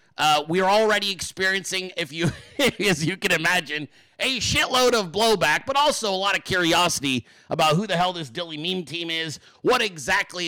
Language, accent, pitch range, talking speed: English, American, 150-195 Hz, 185 wpm